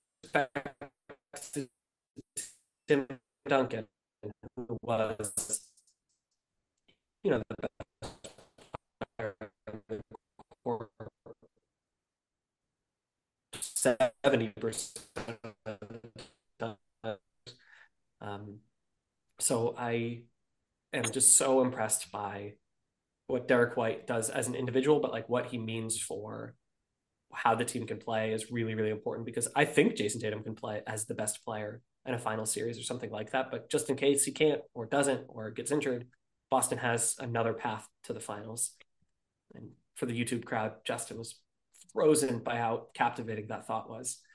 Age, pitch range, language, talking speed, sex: 20-39, 110-135 Hz, English, 120 wpm, male